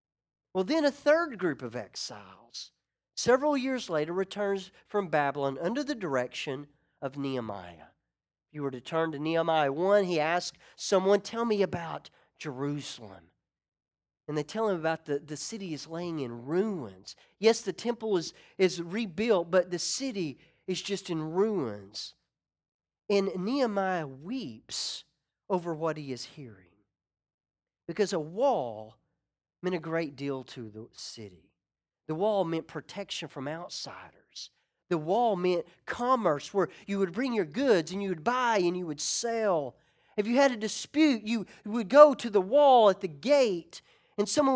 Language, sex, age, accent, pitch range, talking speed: English, male, 40-59, American, 150-220 Hz, 155 wpm